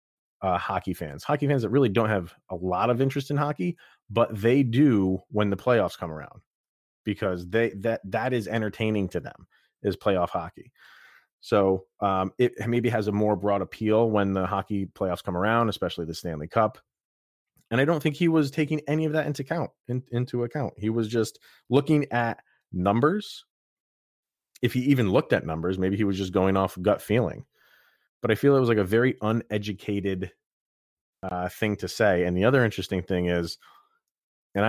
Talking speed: 185 wpm